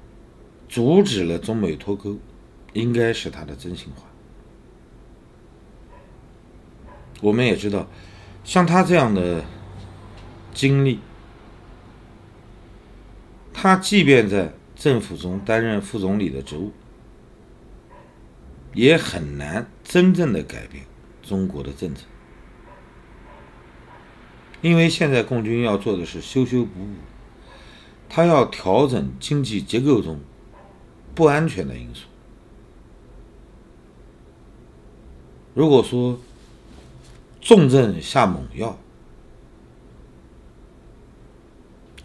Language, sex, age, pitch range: Chinese, male, 50-69, 85-125 Hz